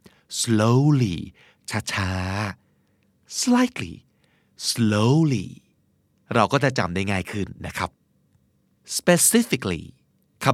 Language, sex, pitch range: Thai, male, 110-160 Hz